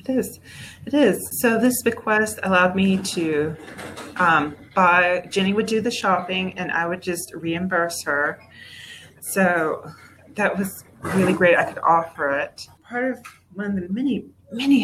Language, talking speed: English, 160 wpm